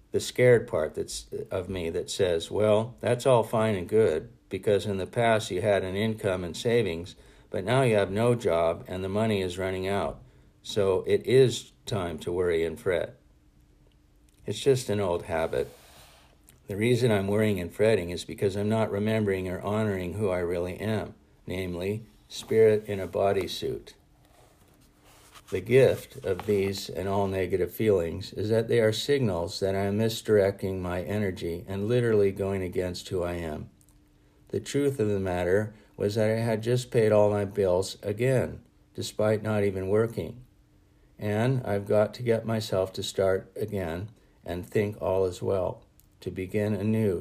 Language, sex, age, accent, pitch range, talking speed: English, male, 50-69, American, 95-110 Hz, 170 wpm